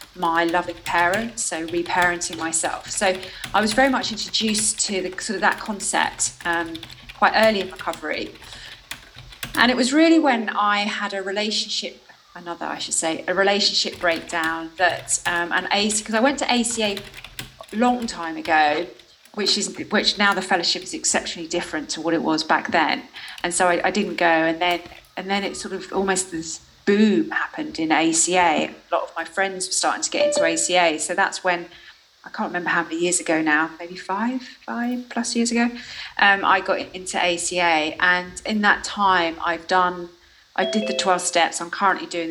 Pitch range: 170-215 Hz